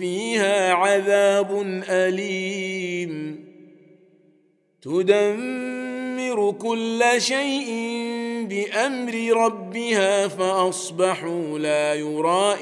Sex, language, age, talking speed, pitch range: male, Arabic, 40-59, 50 wpm, 180-205 Hz